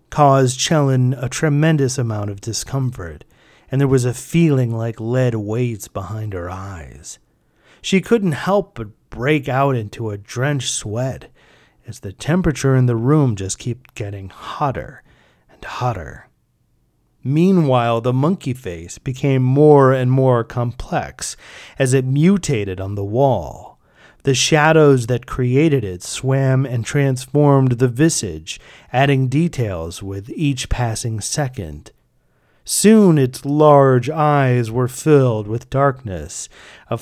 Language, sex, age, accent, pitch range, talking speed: English, male, 30-49, American, 110-145 Hz, 130 wpm